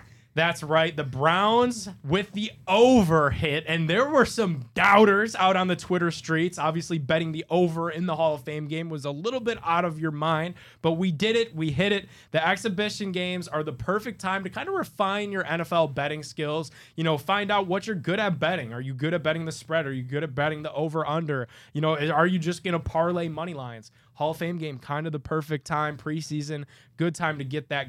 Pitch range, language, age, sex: 145-185 Hz, English, 20-39, male